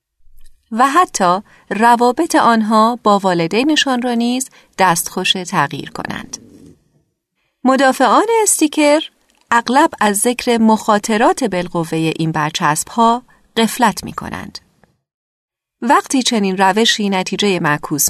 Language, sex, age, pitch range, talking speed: Persian, female, 40-59, 190-255 Hz, 95 wpm